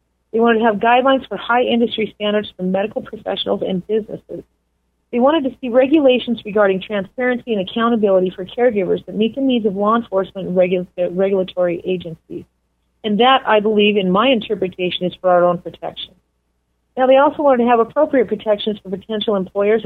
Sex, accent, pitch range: female, American, 185-240 Hz